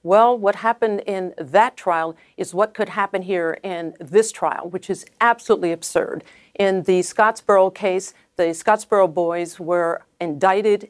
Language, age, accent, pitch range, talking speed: English, 50-69, American, 170-220 Hz, 150 wpm